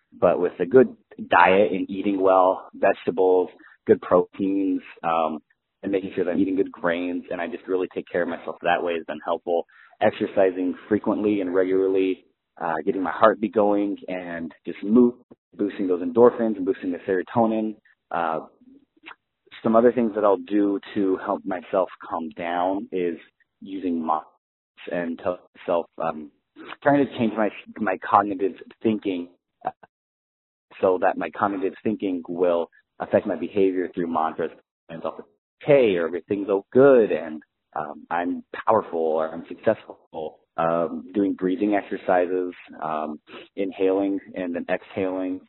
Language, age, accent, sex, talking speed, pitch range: English, 30-49, American, male, 150 wpm, 85-100 Hz